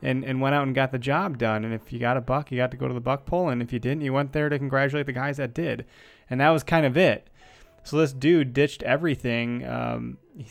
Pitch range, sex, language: 125-145 Hz, male, English